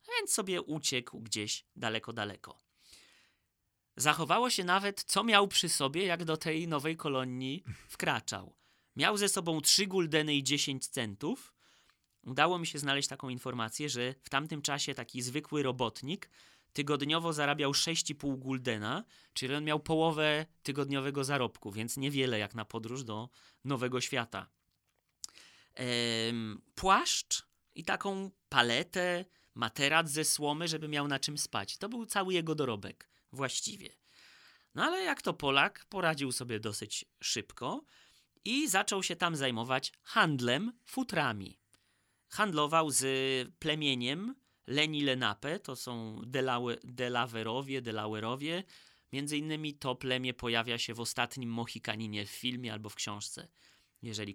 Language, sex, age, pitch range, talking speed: Polish, male, 30-49, 120-160 Hz, 130 wpm